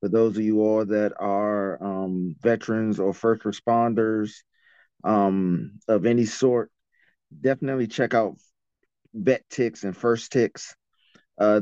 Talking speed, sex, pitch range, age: 130 wpm, male, 100-120 Hz, 30-49